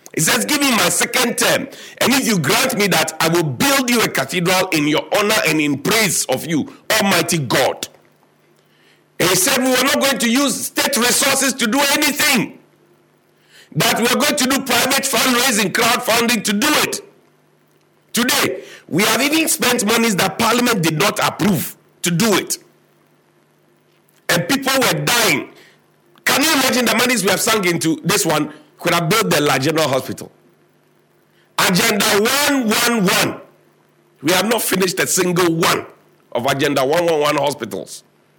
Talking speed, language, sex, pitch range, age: 160 wpm, English, male, 175-250 Hz, 50-69